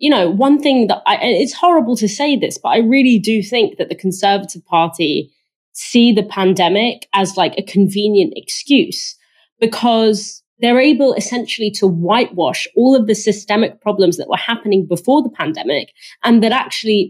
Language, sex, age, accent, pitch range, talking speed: English, female, 30-49, British, 180-235 Hz, 170 wpm